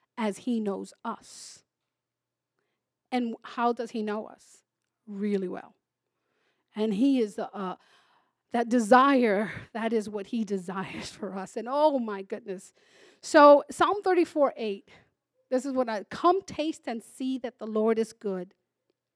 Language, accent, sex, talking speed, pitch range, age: English, American, female, 145 wpm, 225-325 Hz, 40-59